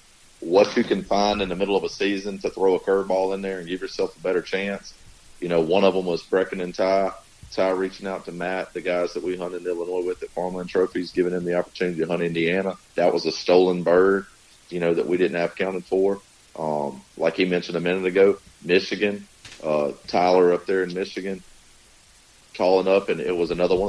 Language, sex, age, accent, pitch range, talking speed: English, male, 40-59, American, 90-105 Hz, 220 wpm